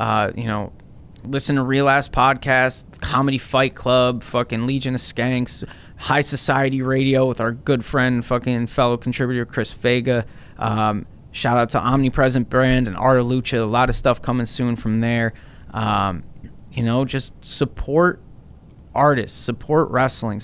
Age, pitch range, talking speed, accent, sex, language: 20-39, 120-140 Hz, 150 wpm, American, male, English